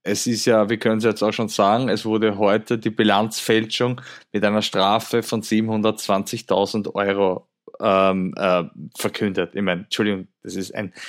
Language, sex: German, male